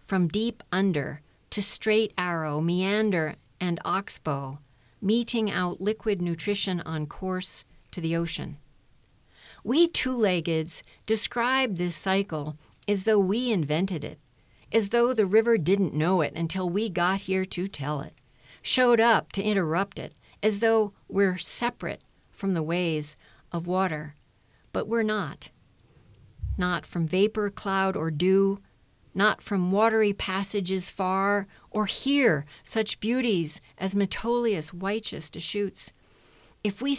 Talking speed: 130 wpm